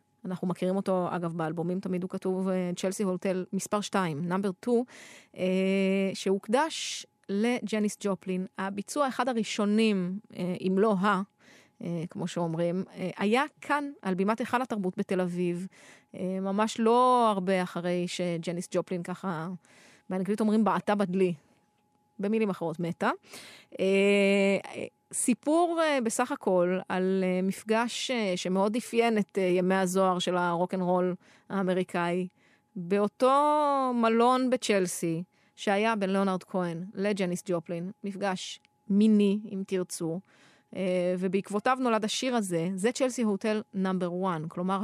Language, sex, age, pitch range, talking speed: Hebrew, female, 30-49, 180-215 Hz, 125 wpm